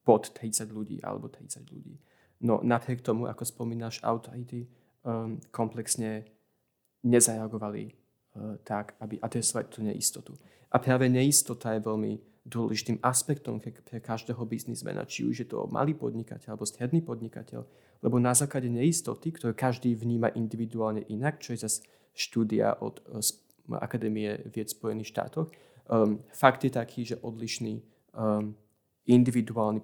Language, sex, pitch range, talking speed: Slovak, male, 110-125 Hz, 135 wpm